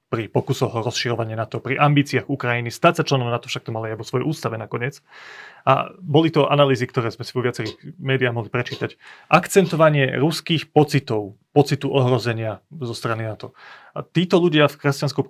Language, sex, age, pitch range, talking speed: Slovak, male, 30-49, 120-145 Hz, 175 wpm